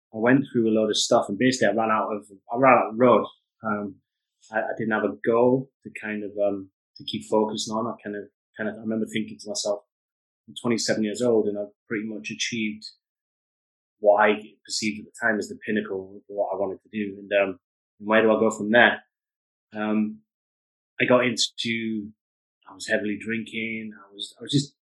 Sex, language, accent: male, English, British